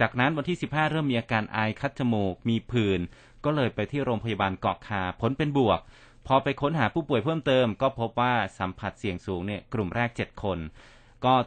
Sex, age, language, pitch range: male, 30-49, Thai, 105-130 Hz